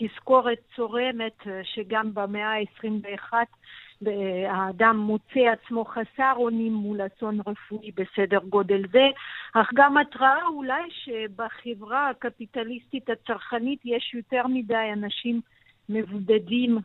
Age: 50-69